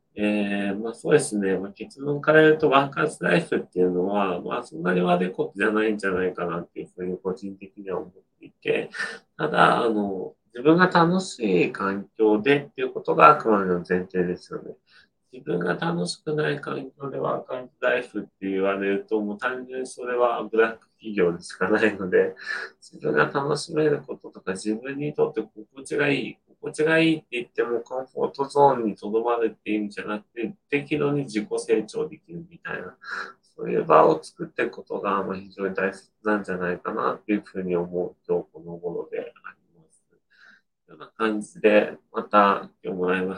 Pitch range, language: 95-145 Hz, Japanese